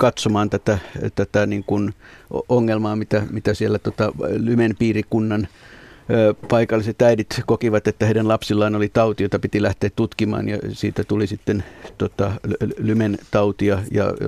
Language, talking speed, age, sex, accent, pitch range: Finnish, 130 wpm, 50-69, male, native, 105-115 Hz